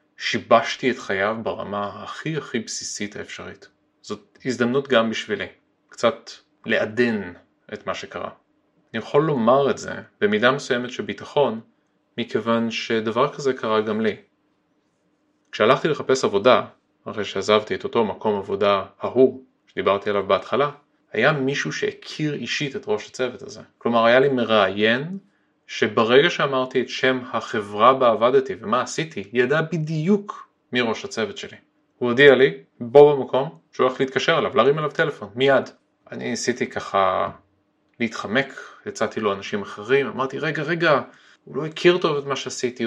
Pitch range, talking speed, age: 120-155 Hz, 145 wpm, 30-49